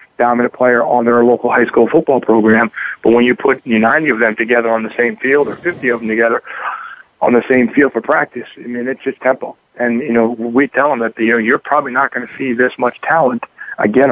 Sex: male